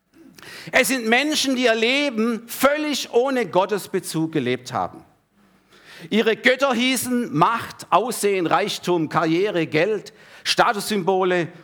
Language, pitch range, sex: German, 160-235 Hz, male